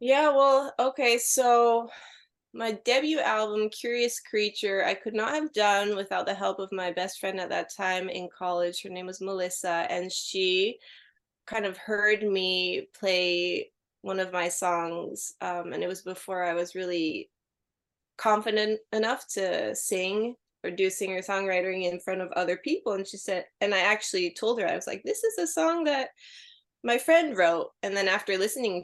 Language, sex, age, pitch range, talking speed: English, female, 20-39, 185-260 Hz, 175 wpm